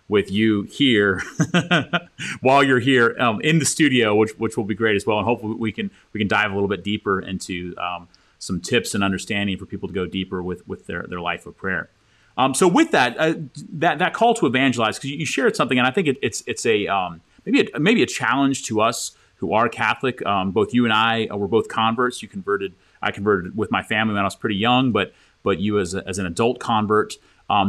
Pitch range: 100-130 Hz